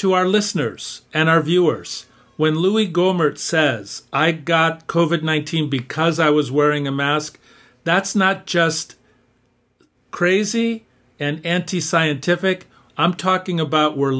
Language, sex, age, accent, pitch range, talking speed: English, male, 50-69, American, 140-185 Hz, 125 wpm